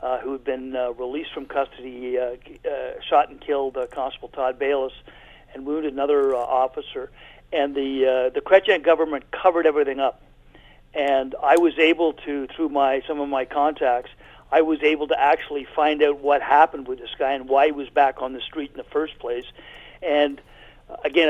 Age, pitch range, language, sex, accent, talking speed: 50-69, 140-175 Hz, English, male, American, 190 wpm